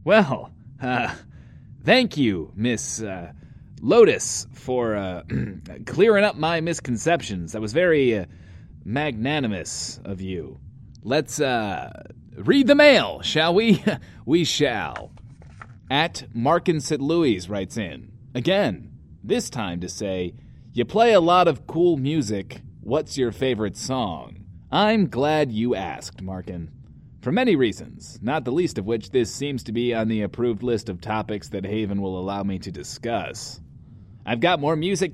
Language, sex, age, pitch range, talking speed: English, male, 30-49, 105-170 Hz, 145 wpm